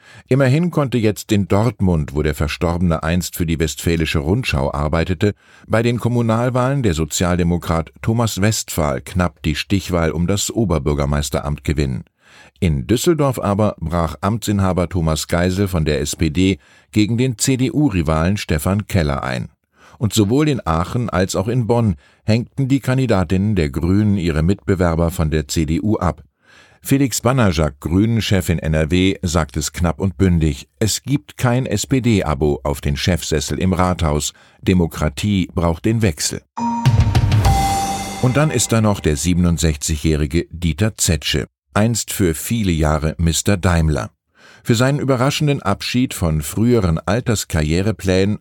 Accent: German